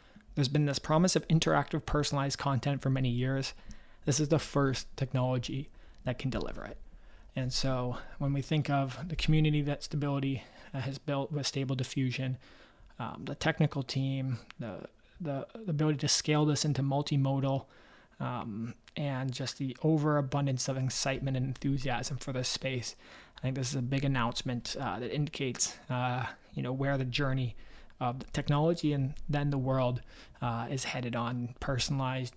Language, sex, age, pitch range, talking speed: English, male, 20-39, 125-140 Hz, 160 wpm